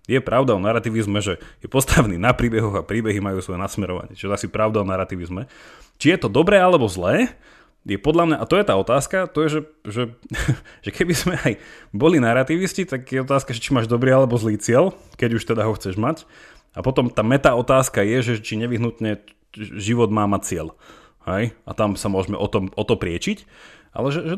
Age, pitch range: 30-49, 105-135 Hz